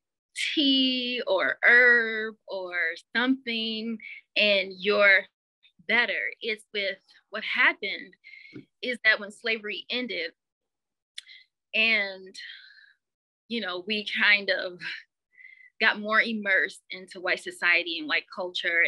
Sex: female